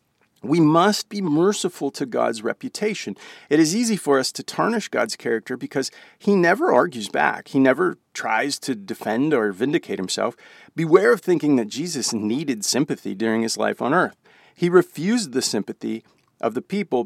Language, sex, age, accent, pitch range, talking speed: English, male, 40-59, American, 125-200 Hz, 170 wpm